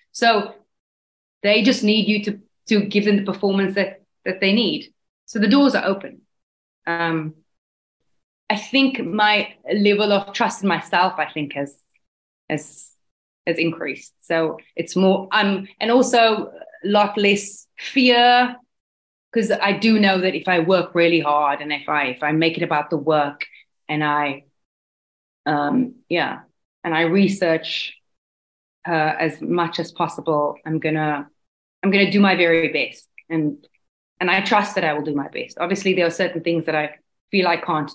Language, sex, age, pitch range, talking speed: English, female, 20-39, 155-200 Hz, 165 wpm